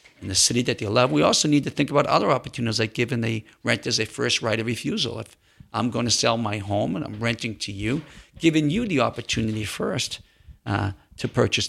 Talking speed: 225 wpm